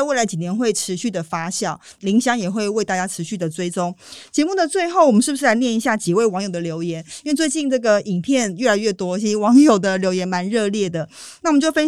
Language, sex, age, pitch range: Chinese, female, 30-49, 180-250 Hz